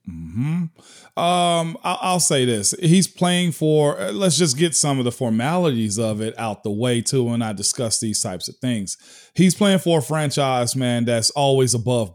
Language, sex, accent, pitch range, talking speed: English, male, American, 130-175 Hz, 190 wpm